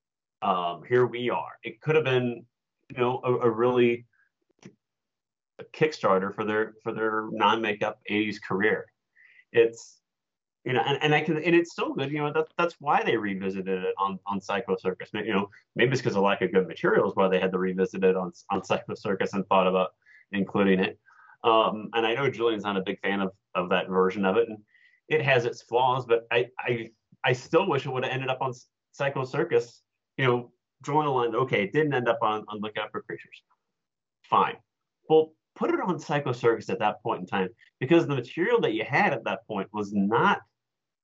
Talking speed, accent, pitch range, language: 205 wpm, American, 100-150 Hz, English